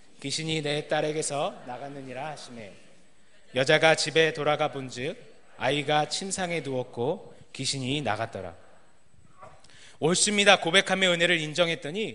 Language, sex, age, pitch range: Korean, male, 30-49, 130-185 Hz